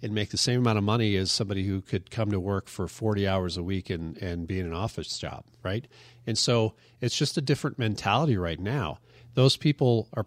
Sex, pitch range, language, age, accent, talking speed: male, 100-125 Hz, English, 40-59, American, 230 wpm